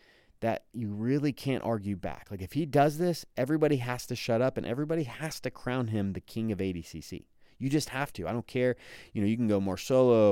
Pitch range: 95-125 Hz